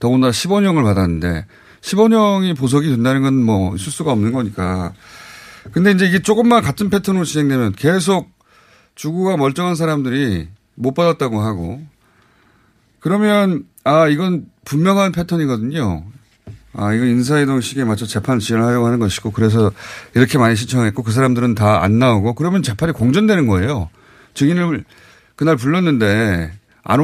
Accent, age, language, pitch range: native, 30-49, Korean, 110-160 Hz